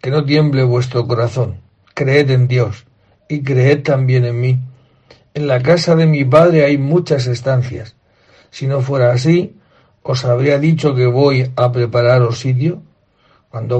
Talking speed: 150 wpm